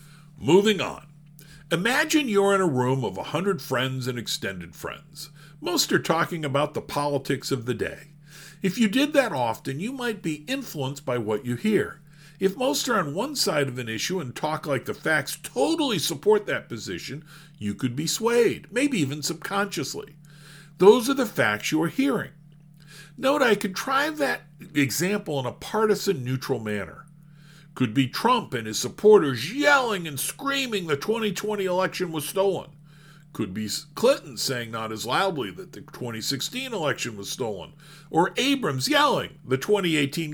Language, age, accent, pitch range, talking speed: English, 50-69, American, 140-205 Hz, 165 wpm